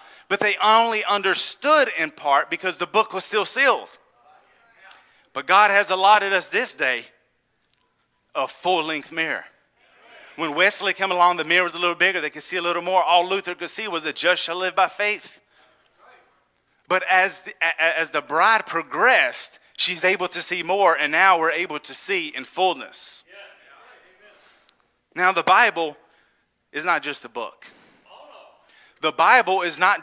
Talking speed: 160 wpm